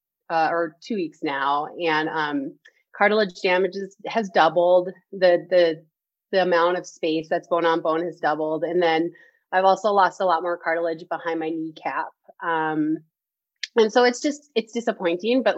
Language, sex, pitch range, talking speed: English, female, 165-195 Hz, 165 wpm